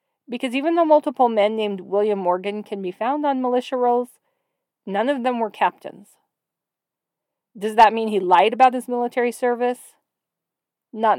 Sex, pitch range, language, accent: female, 195-265 Hz, English, American